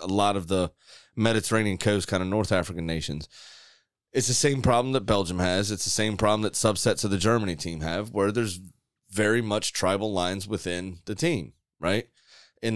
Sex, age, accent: male, 30-49, American